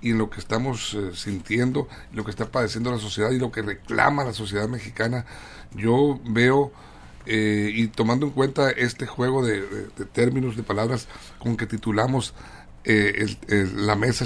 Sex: male